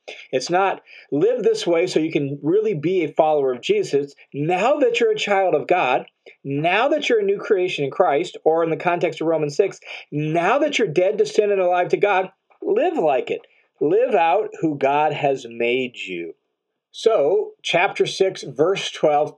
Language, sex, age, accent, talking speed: English, male, 40-59, American, 190 wpm